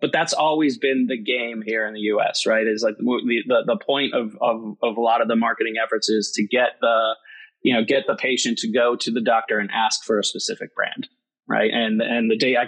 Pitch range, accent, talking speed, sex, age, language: 110-140 Hz, American, 245 wpm, male, 20-39, English